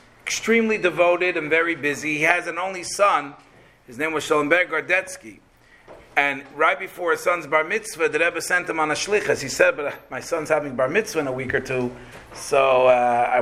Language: English